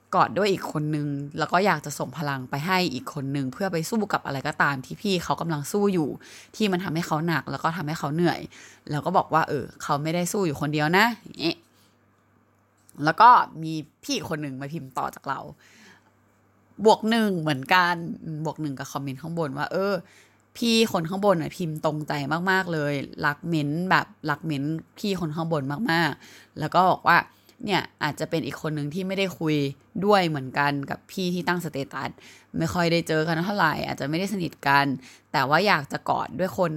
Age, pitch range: 20-39, 145-185 Hz